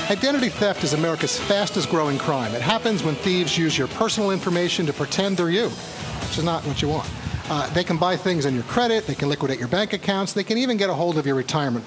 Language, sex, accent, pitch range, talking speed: English, male, American, 145-195 Hz, 245 wpm